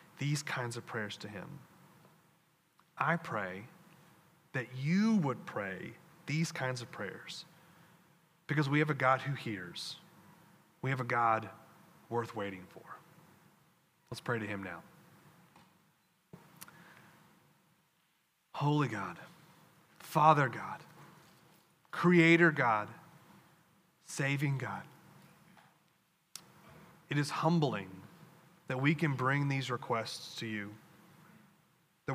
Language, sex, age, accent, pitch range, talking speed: English, male, 30-49, American, 125-170 Hz, 105 wpm